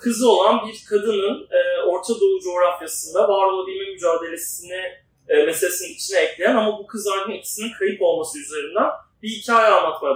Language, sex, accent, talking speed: Turkish, male, native, 140 wpm